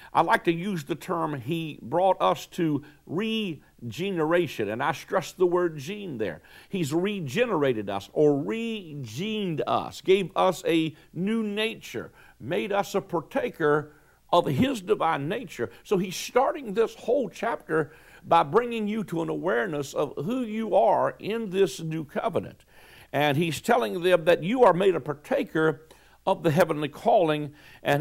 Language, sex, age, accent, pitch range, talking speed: English, male, 60-79, American, 150-195 Hz, 155 wpm